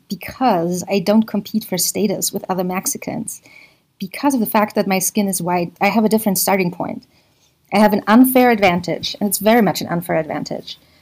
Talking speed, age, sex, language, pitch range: 195 wpm, 40-59, female, English, 175-215 Hz